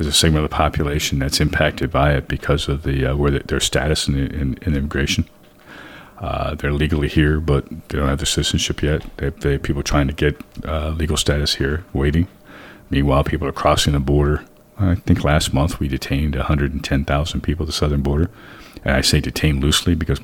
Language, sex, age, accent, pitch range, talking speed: English, male, 40-59, American, 70-80 Hz, 205 wpm